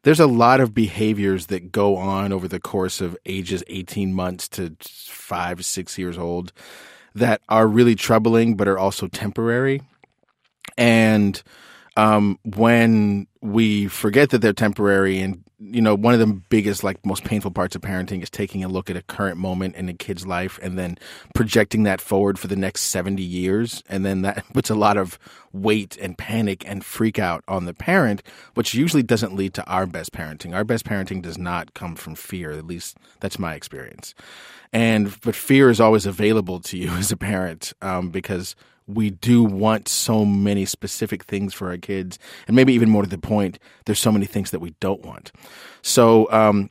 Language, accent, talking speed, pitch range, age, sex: English, American, 190 wpm, 95-110 Hz, 30-49, male